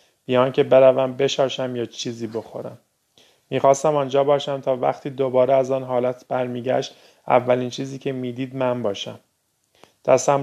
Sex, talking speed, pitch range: male, 140 wpm, 120-135 Hz